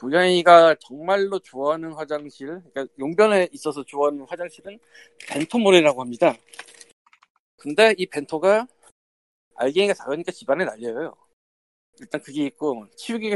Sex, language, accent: male, Korean, native